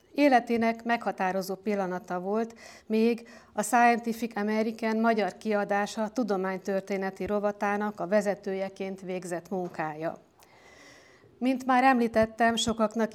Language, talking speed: Hungarian, 95 wpm